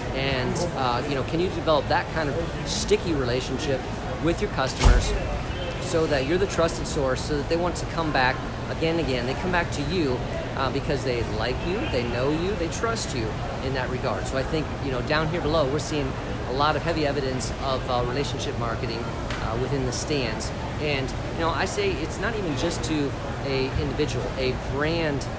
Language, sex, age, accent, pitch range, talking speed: English, male, 40-59, American, 125-145 Hz, 205 wpm